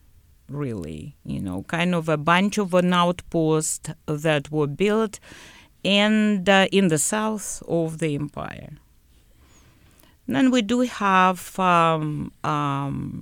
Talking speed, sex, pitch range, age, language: 125 wpm, female, 130-180 Hz, 50-69, Spanish